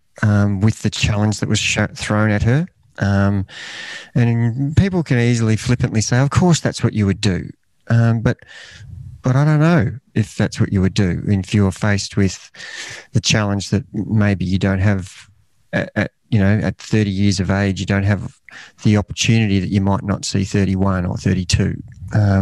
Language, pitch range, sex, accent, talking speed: English, 100-115 Hz, male, Australian, 185 wpm